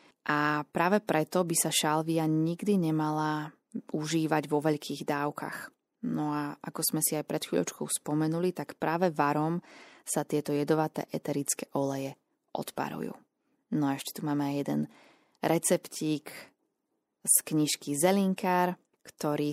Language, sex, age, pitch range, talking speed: Slovak, female, 20-39, 150-190 Hz, 125 wpm